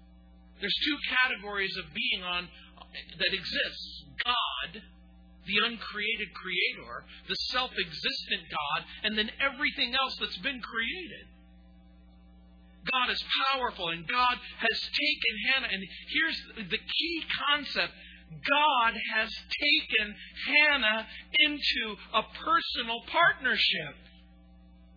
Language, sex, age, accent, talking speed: English, male, 50-69, American, 105 wpm